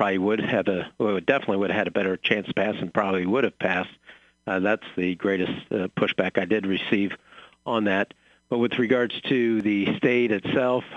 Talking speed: 210 wpm